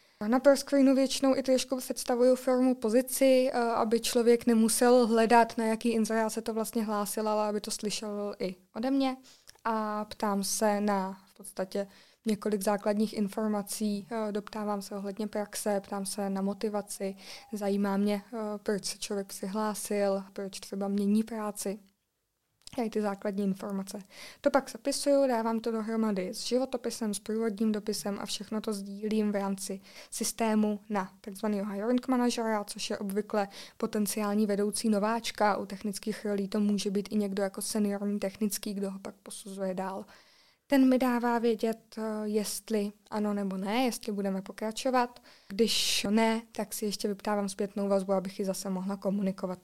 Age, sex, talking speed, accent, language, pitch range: 20-39, female, 150 wpm, native, Czech, 200-225 Hz